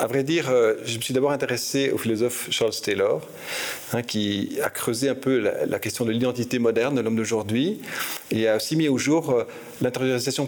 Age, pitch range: 40-59, 125-155 Hz